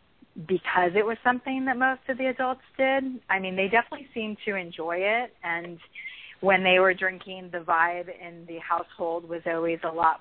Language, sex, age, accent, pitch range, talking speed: English, female, 30-49, American, 170-200 Hz, 190 wpm